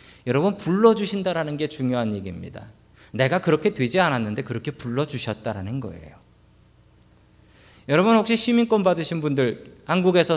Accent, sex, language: native, male, Korean